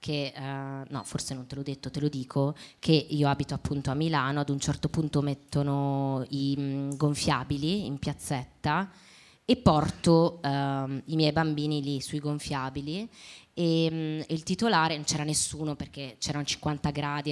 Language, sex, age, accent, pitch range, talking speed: Italian, female, 20-39, native, 140-165 Hz, 155 wpm